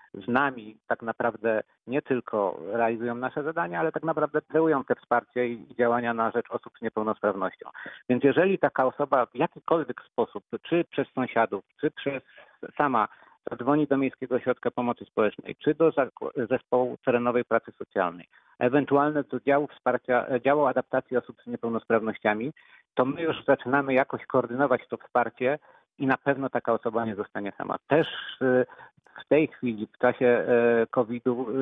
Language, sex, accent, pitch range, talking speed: Polish, male, native, 120-140 Hz, 150 wpm